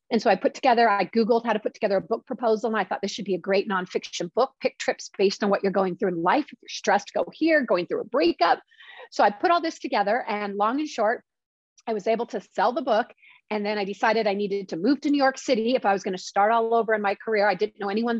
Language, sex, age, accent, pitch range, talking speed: English, female, 30-49, American, 200-255 Hz, 285 wpm